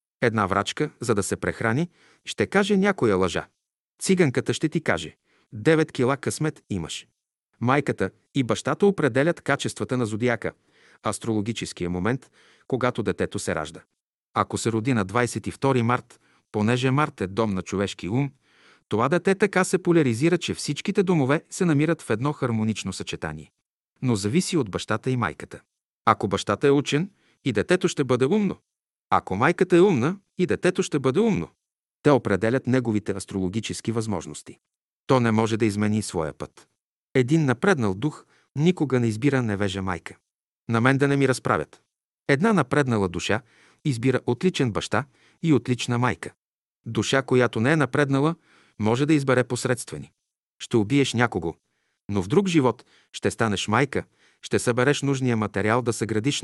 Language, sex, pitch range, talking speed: Bulgarian, male, 110-145 Hz, 155 wpm